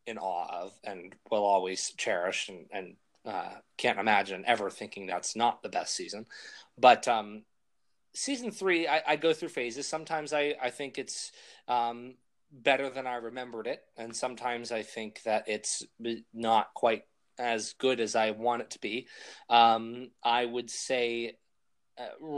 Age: 20-39